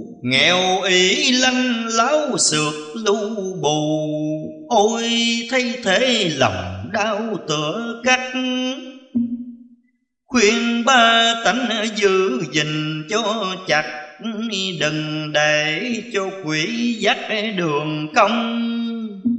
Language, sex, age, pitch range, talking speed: Vietnamese, male, 30-49, 165-240 Hz, 85 wpm